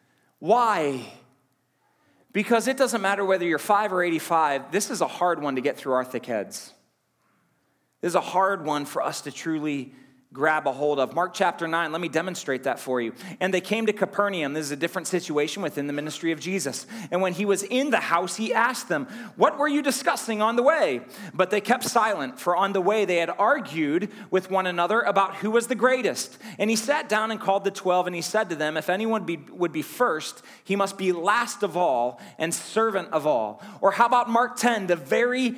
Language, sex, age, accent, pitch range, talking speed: English, male, 30-49, American, 175-235 Hz, 220 wpm